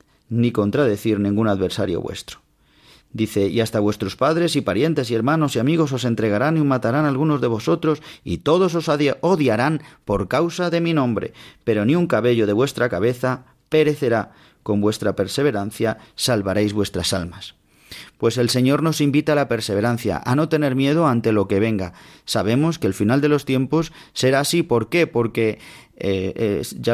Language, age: Spanish, 40-59